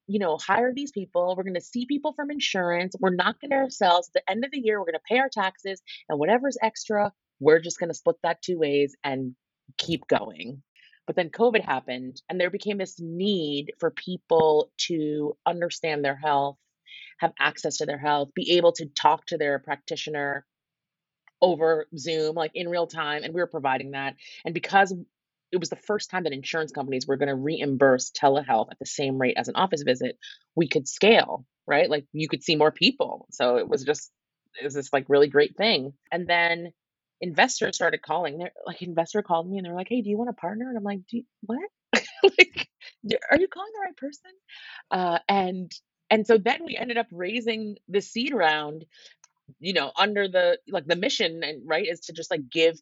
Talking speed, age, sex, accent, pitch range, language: 205 wpm, 30-49, female, American, 155-215 Hz, English